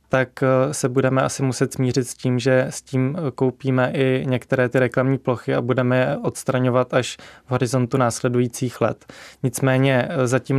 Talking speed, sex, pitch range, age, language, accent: 160 wpm, male, 125-130 Hz, 20-39, Czech, native